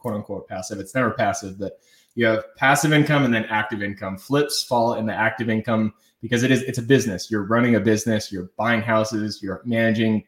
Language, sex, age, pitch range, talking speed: English, male, 20-39, 110-125 Hz, 210 wpm